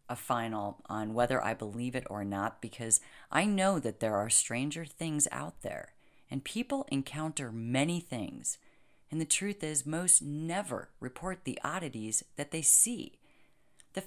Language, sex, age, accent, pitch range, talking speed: English, female, 30-49, American, 120-170 Hz, 160 wpm